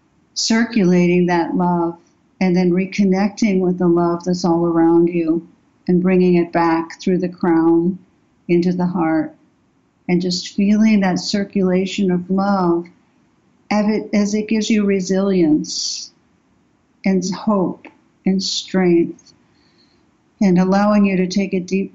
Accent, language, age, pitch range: American, English, 60-79, 175-195 Hz